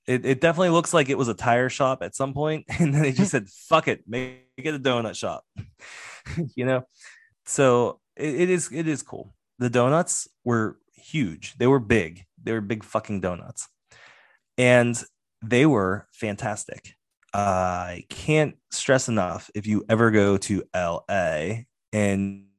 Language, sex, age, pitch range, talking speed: English, male, 20-39, 100-130 Hz, 160 wpm